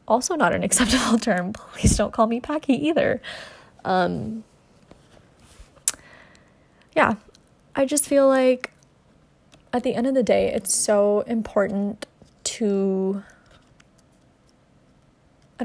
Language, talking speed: English, 105 wpm